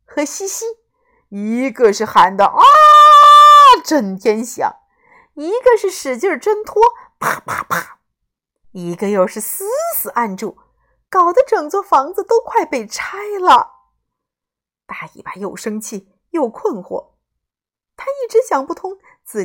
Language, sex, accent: Chinese, female, native